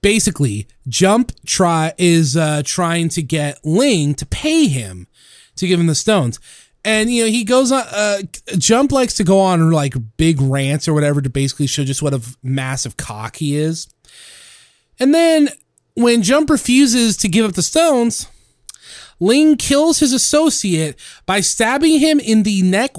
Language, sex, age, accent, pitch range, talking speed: English, male, 30-49, American, 140-210 Hz, 165 wpm